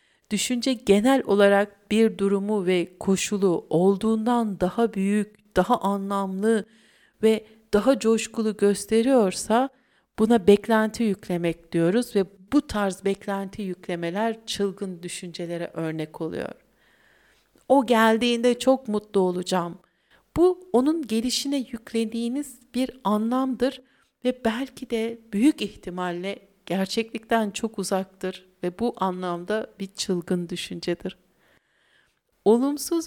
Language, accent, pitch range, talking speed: Turkish, native, 185-240 Hz, 100 wpm